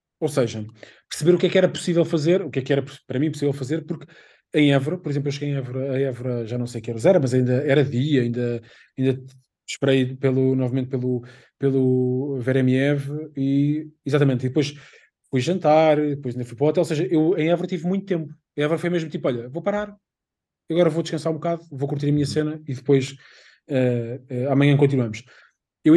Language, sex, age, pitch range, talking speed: Portuguese, male, 20-39, 130-160 Hz, 215 wpm